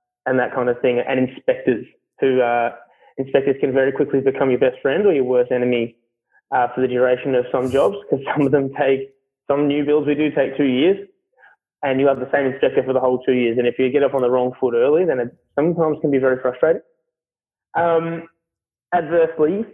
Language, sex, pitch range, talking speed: English, male, 130-155 Hz, 215 wpm